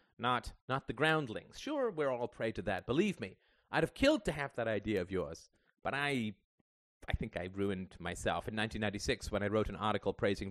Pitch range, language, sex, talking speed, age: 105-150 Hz, English, male, 205 wpm, 30-49